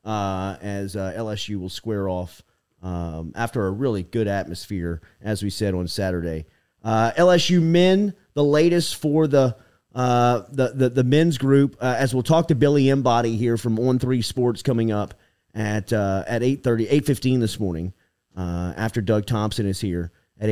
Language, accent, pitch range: English, American, 95-125 Hz